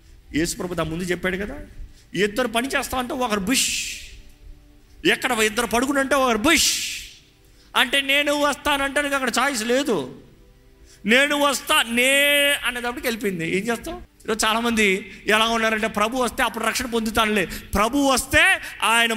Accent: native